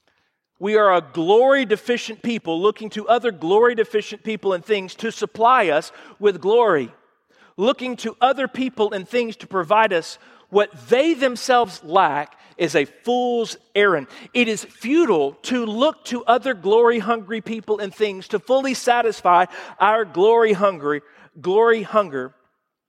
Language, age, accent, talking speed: English, 50-69, American, 145 wpm